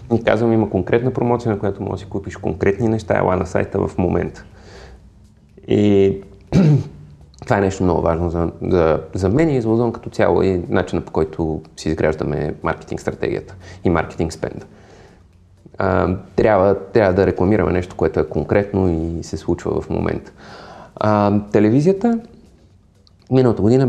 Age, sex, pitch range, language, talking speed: 30-49, male, 85-105 Hz, Bulgarian, 155 wpm